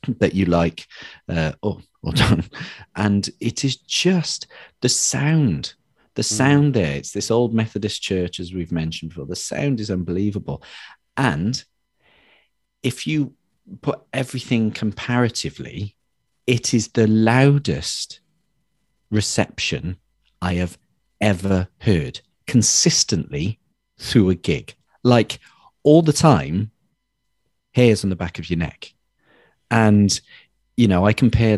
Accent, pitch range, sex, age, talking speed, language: British, 90-125 Hz, male, 40-59, 120 wpm, English